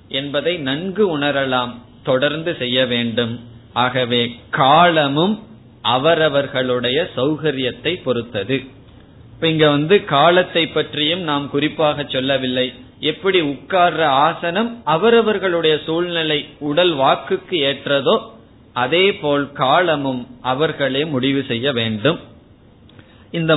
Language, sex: Tamil, male